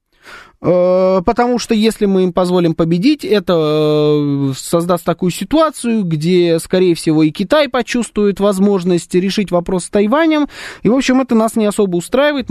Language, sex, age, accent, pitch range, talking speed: Russian, male, 20-39, native, 175-240 Hz, 145 wpm